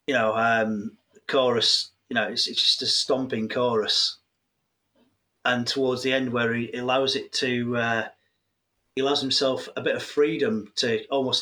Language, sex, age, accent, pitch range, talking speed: English, male, 30-49, British, 110-135 Hz, 165 wpm